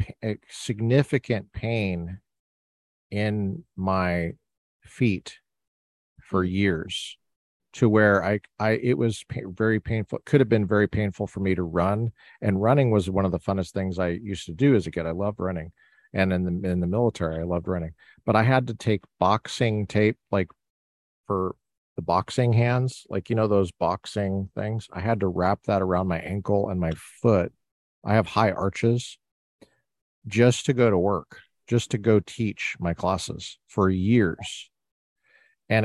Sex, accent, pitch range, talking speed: male, American, 90-115 Hz, 165 wpm